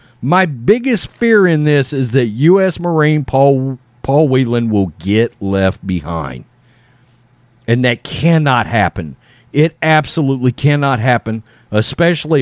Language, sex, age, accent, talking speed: English, male, 40-59, American, 120 wpm